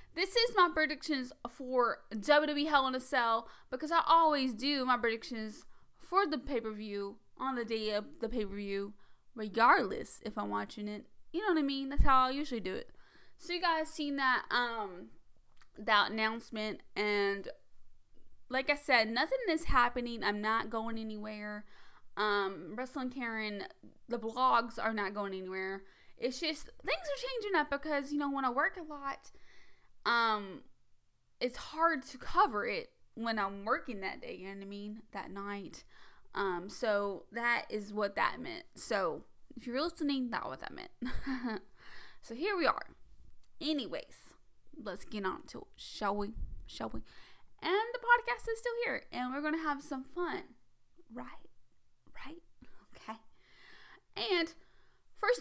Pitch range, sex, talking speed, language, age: 215-310 Hz, female, 160 wpm, English, 20-39